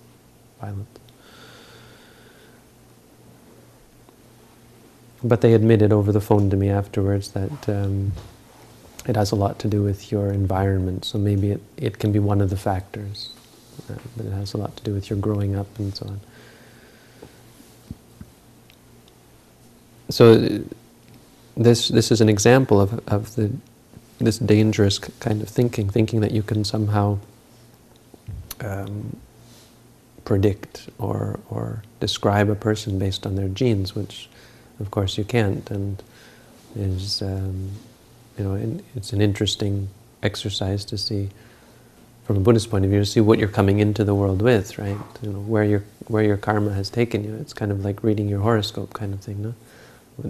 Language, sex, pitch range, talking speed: English, male, 100-115 Hz, 155 wpm